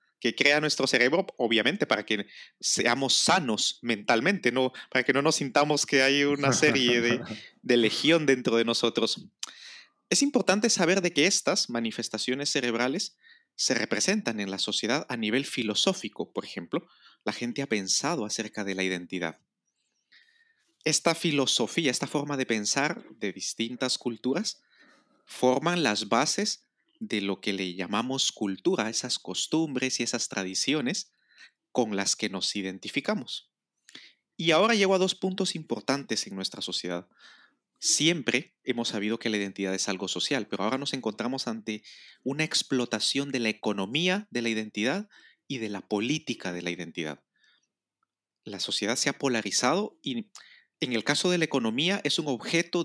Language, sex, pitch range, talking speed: Spanish, male, 110-170 Hz, 150 wpm